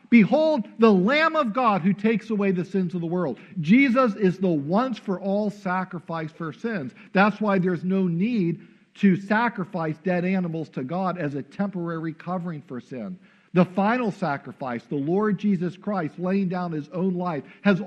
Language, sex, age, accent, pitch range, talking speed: English, male, 50-69, American, 175-215 Hz, 170 wpm